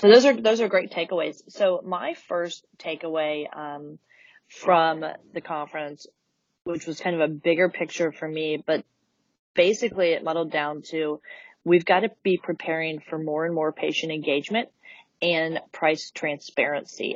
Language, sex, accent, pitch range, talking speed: English, female, American, 155-175 Hz, 155 wpm